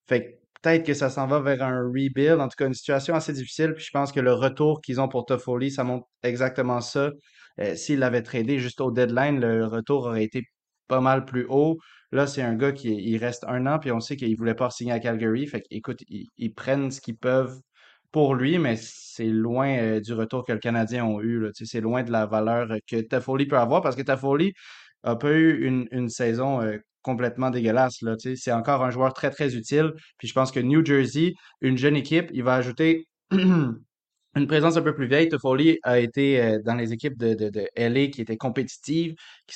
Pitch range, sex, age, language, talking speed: 120-140 Hz, male, 20-39, French, 225 wpm